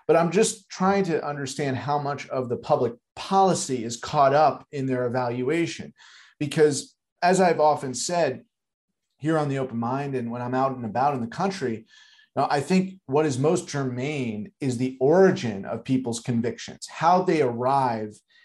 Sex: male